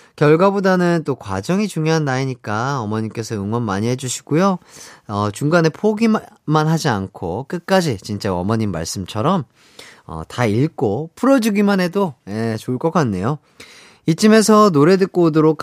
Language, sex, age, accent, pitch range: Korean, male, 30-49, native, 115-185 Hz